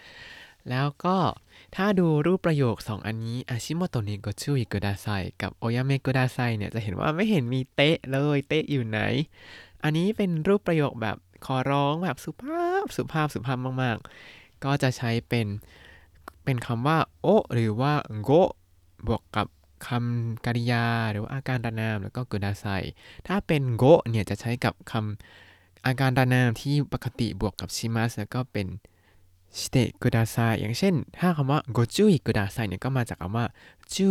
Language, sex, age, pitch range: Thai, male, 20-39, 105-140 Hz